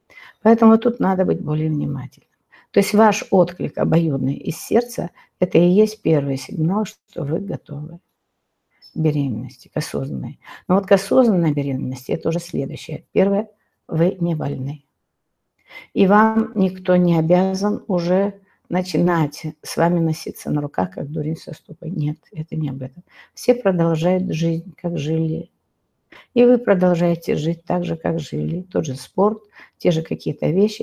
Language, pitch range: Russian, 150-185 Hz